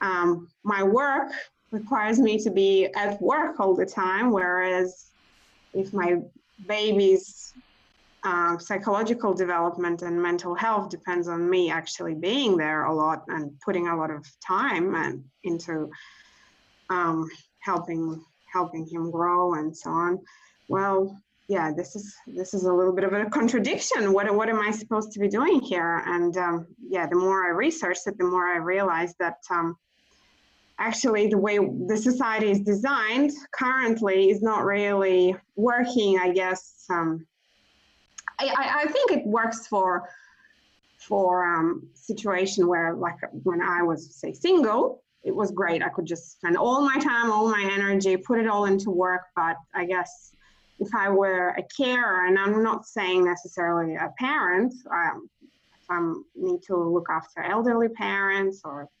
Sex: female